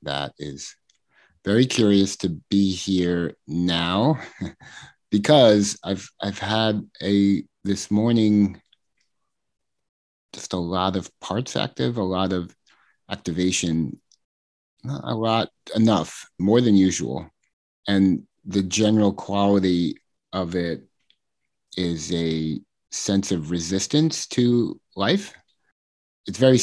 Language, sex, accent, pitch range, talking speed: English, male, American, 90-110 Hz, 105 wpm